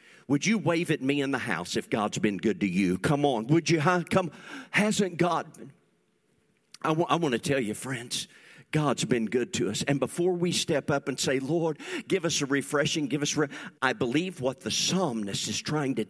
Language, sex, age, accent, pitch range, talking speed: English, male, 50-69, American, 140-195 Hz, 200 wpm